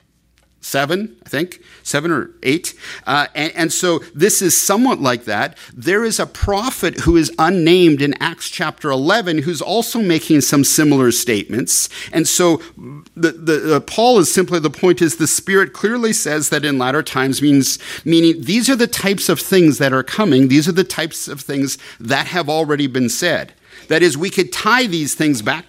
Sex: male